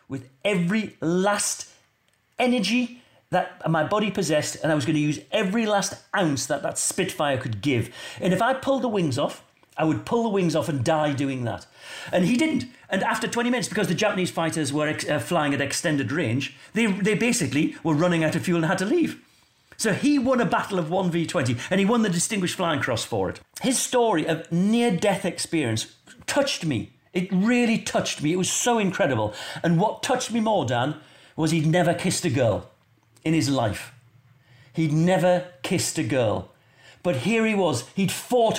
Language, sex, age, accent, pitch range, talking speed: English, male, 40-59, British, 145-205 Hz, 195 wpm